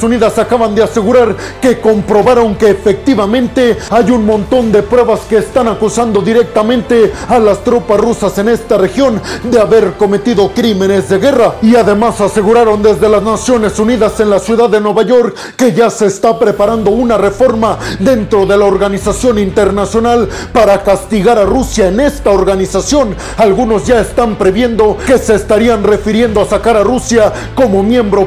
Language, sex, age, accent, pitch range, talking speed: Spanish, male, 40-59, Mexican, 205-240 Hz, 160 wpm